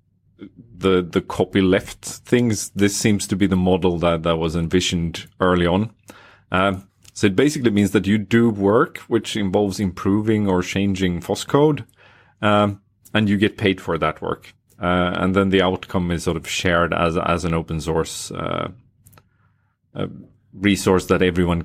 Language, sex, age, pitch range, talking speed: English, male, 30-49, 90-105 Hz, 160 wpm